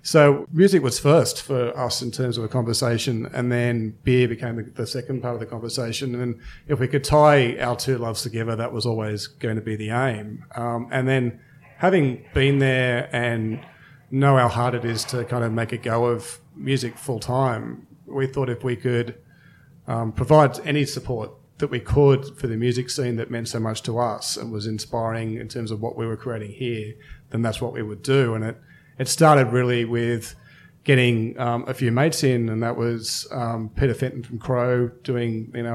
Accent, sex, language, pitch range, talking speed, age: Australian, male, English, 115-135 Hz, 205 wpm, 30-49